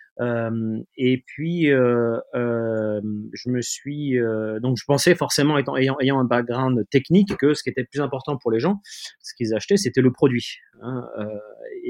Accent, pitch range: French, 115-140 Hz